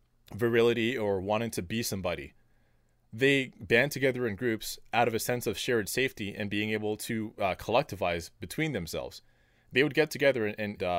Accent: American